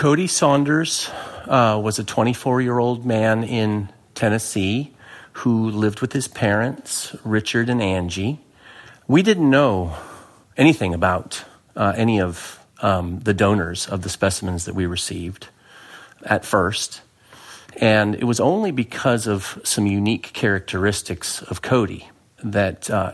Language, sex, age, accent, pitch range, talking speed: English, male, 40-59, American, 95-115 Hz, 125 wpm